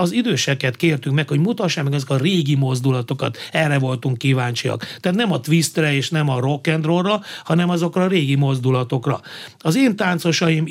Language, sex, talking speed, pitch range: Hungarian, male, 170 wpm, 140-165 Hz